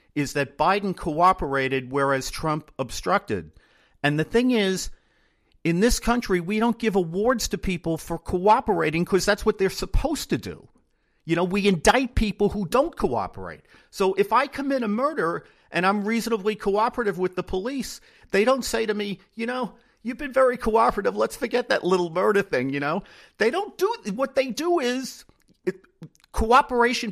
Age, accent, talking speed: 50-69, American, 175 wpm